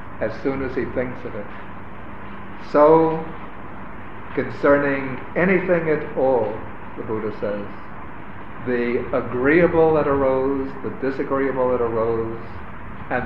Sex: male